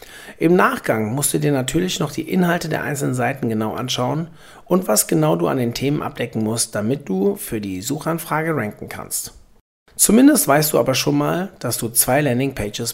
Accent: German